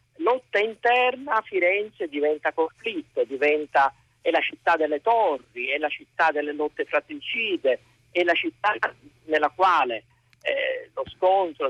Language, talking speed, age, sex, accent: Italian, 130 wpm, 50-69, male, native